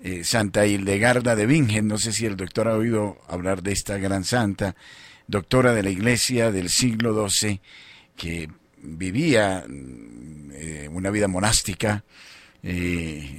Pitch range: 100-140 Hz